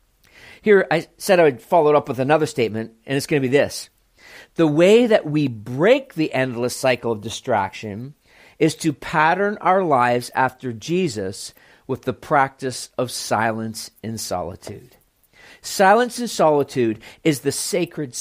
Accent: American